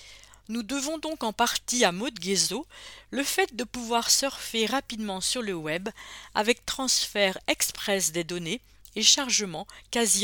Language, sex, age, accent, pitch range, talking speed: English, female, 50-69, French, 180-240 Hz, 145 wpm